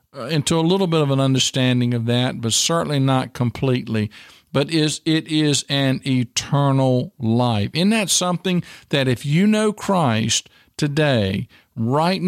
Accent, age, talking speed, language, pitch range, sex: American, 50-69, 145 wpm, English, 125-165 Hz, male